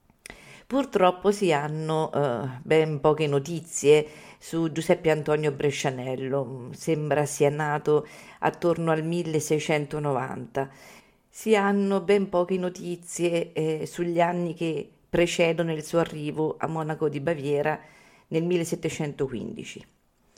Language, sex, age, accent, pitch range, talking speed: Italian, female, 50-69, native, 145-175 Hz, 105 wpm